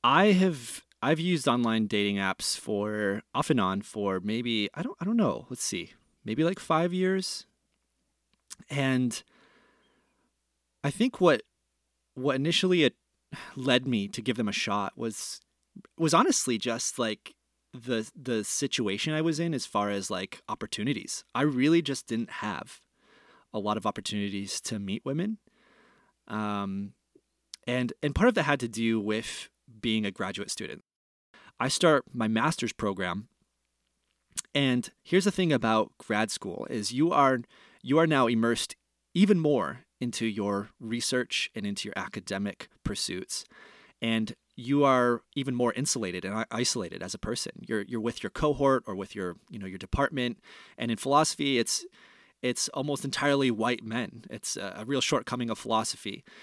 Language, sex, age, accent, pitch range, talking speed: English, male, 30-49, American, 105-145 Hz, 155 wpm